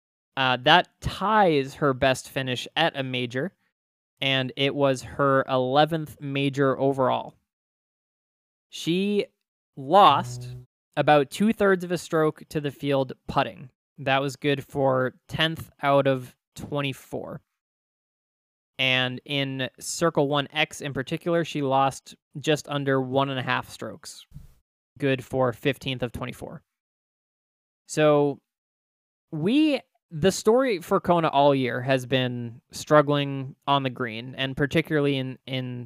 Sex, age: male, 20-39